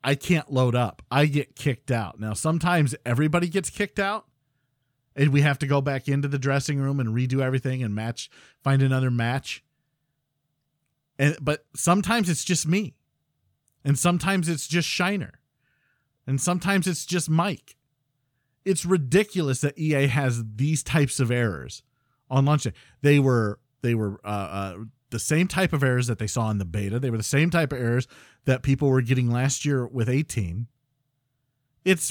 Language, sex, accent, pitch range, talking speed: English, male, American, 125-155 Hz, 175 wpm